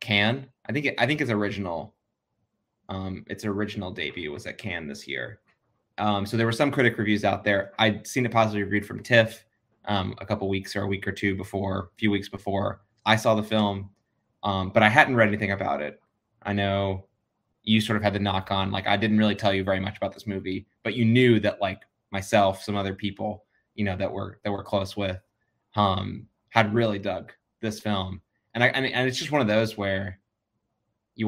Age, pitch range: 20-39, 100-115 Hz